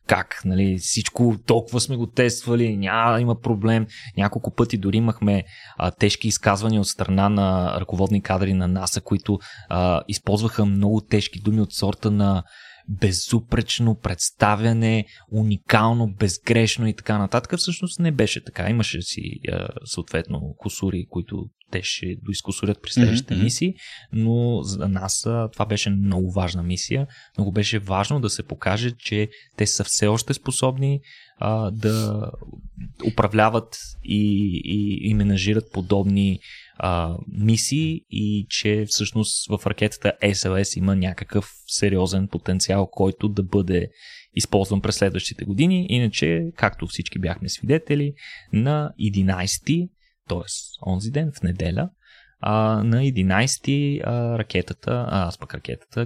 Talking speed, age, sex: 130 wpm, 20-39, male